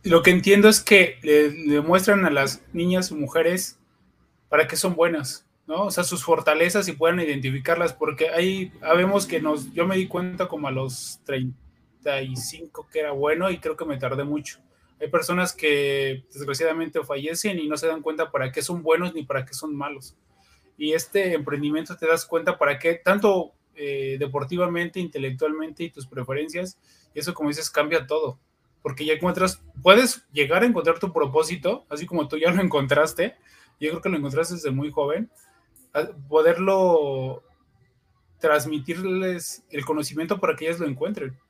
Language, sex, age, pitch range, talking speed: Spanish, male, 20-39, 140-175 Hz, 170 wpm